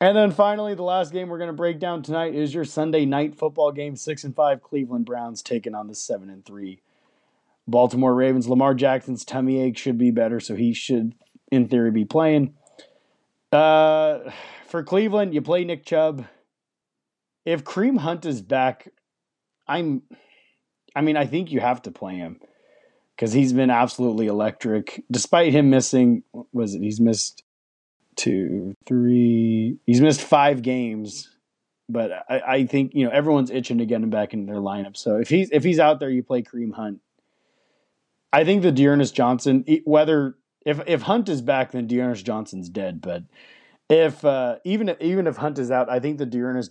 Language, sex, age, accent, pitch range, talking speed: English, male, 30-49, American, 115-155 Hz, 180 wpm